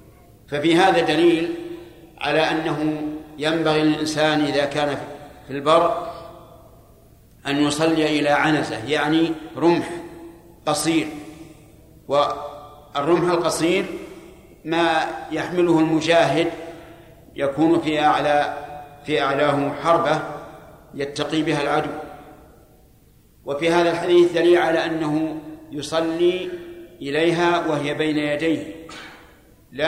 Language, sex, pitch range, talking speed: Arabic, male, 145-170 Hz, 85 wpm